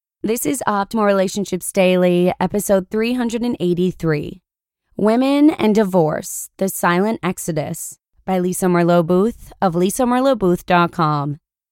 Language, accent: English, American